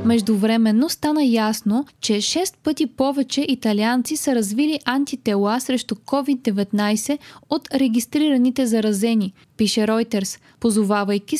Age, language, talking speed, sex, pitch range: 20-39, Bulgarian, 100 wpm, female, 215-275 Hz